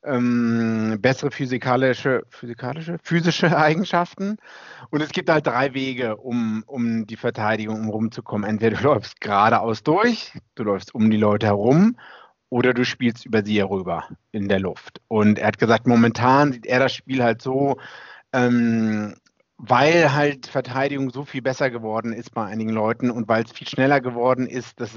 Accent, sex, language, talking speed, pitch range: German, male, German, 165 wpm, 115-150 Hz